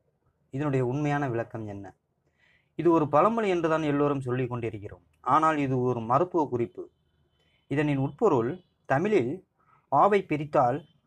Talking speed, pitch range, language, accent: 115 wpm, 120-165 Hz, Tamil, native